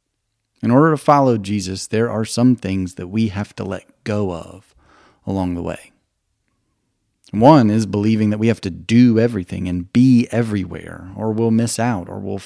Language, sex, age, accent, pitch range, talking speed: English, male, 30-49, American, 95-120 Hz, 180 wpm